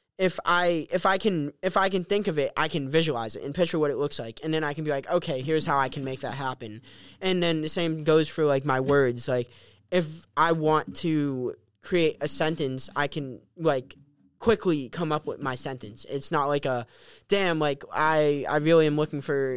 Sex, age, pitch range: male, 20-39, 140-165 Hz